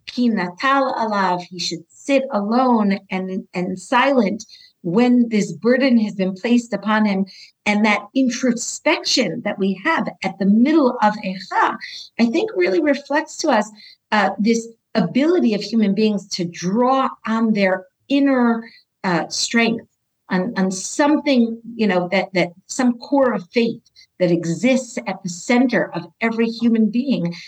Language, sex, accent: English, female, American